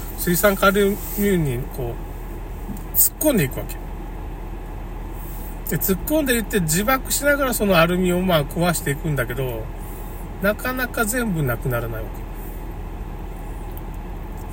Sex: male